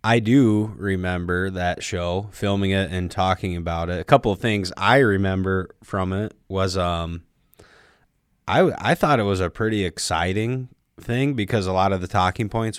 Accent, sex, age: American, male, 20-39